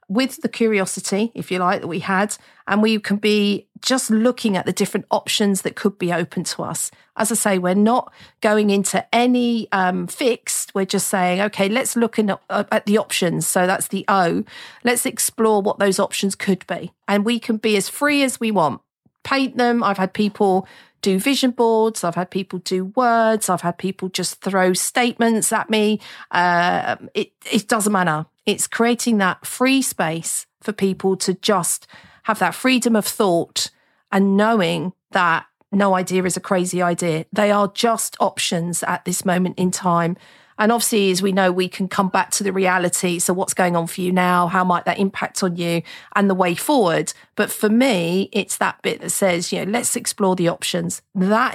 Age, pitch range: 40-59, 185-225 Hz